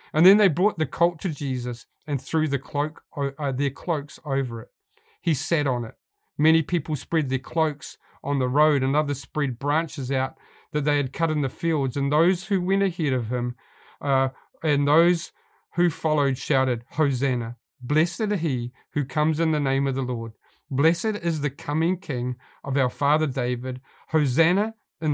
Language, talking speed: English, 180 wpm